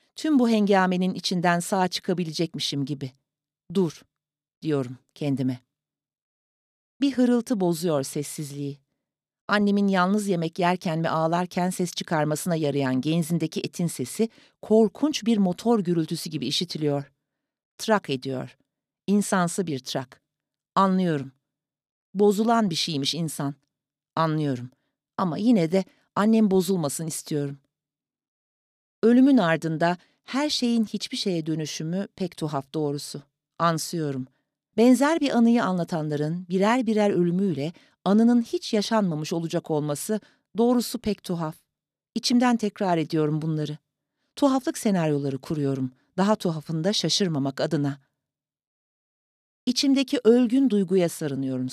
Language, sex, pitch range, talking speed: Turkish, female, 145-210 Hz, 105 wpm